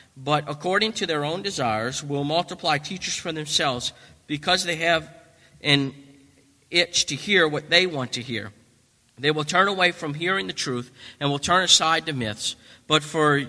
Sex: male